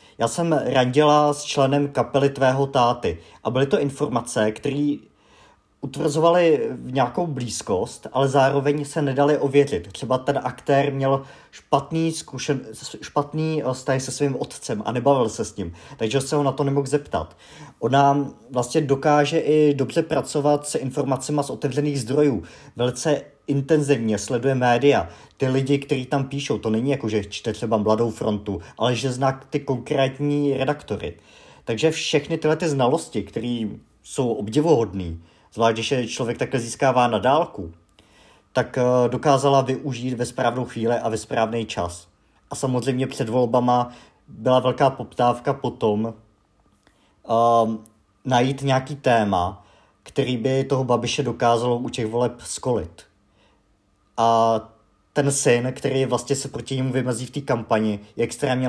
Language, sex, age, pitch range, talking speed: Czech, male, 50-69, 115-140 Hz, 140 wpm